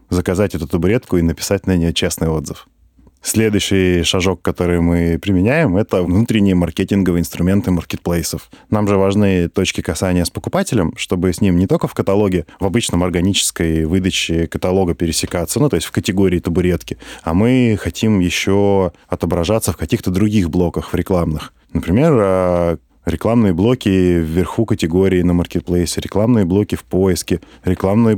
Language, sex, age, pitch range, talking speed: Russian, male, 20-39, 85-105 Hz, 145 wpm